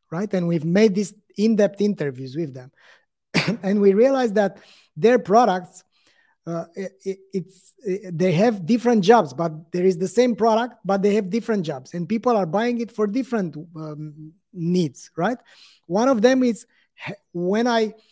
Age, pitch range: 30-49, 175-225 Hz